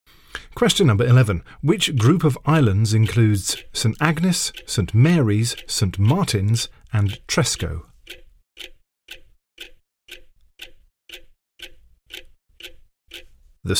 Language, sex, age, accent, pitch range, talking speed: English, male, 50-69, British, 100-145 Hz, 75 wpm